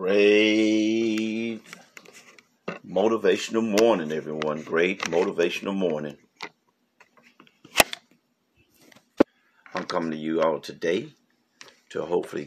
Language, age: English, 50-69